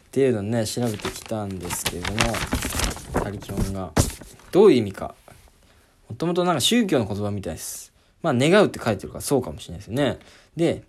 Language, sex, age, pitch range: Japanese, male, 20-39, 95-135 Hz